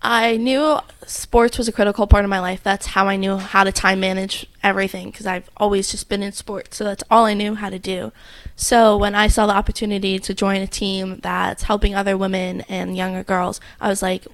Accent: American